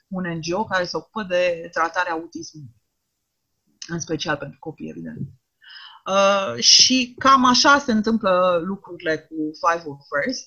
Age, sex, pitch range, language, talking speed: 30-49, female, 170-225 Hz, Romanian, 140 wpm